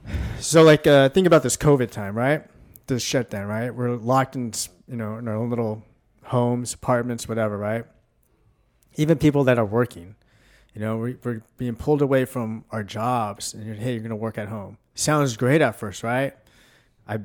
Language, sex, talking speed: English, male, 190 wpm